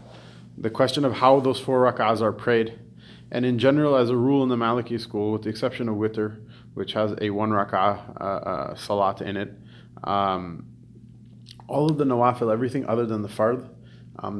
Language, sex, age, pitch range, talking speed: English, male, 30-49, 100-115 Hz, 190 wpm